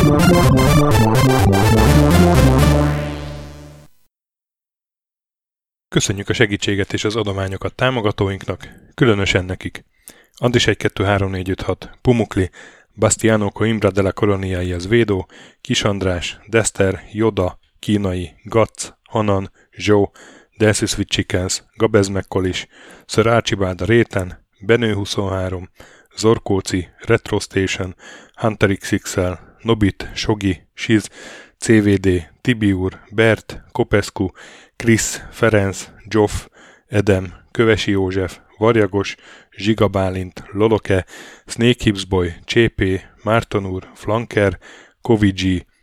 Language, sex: Hungarian, male